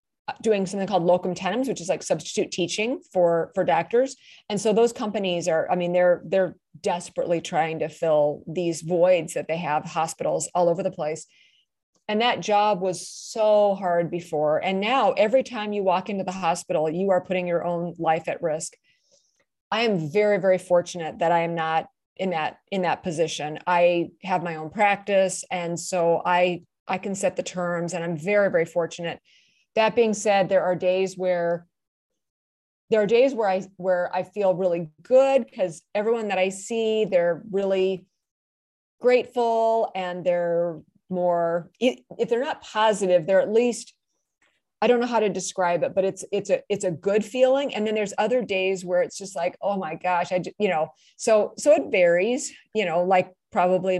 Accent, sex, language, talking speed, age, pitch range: American, female, English, 185 wpm, 30-49, 175-210 Hz